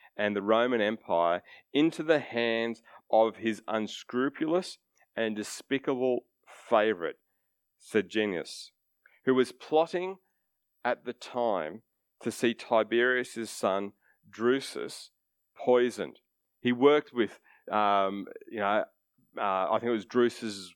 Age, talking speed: 30-49, 110 wpm